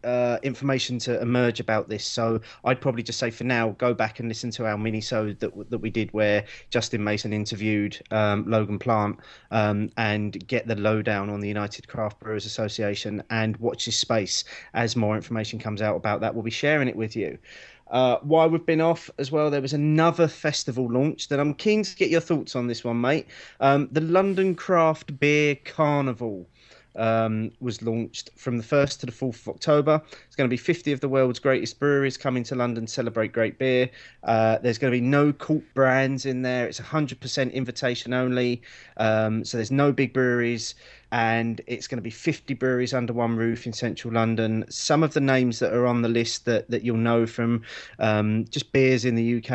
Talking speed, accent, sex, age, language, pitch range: 205 wpm, British, male, 30-49, English, 110-135 Hz